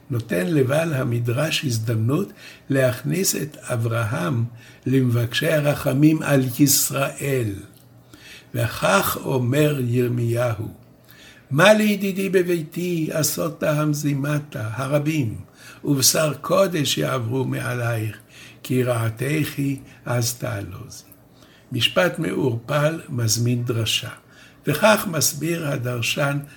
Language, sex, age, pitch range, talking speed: Hebrew, male, 60-79, 120-150 Hz, 80 wpm